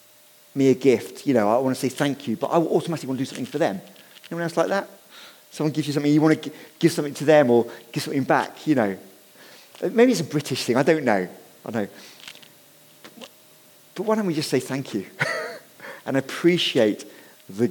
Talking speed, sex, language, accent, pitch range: 215 wpm, male, English, British, 125-160 Hz